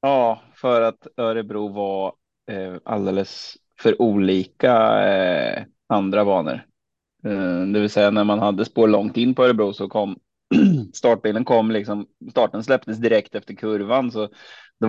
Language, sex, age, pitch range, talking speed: Swedish, male, 20-39, 95-110 Hz, 145 wpm